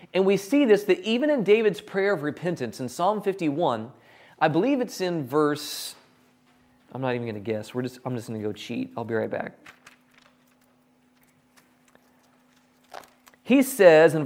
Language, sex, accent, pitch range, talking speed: English, male, American, 130-195 Hz, 170 wpm